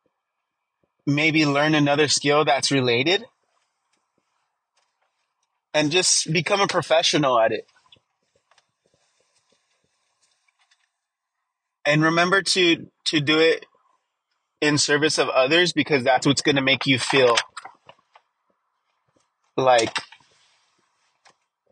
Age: 30-49